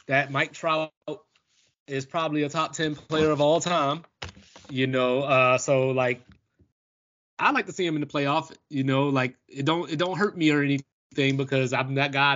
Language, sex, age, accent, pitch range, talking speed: English, male, 20-39, American, 135-170 Hz, 195 wpm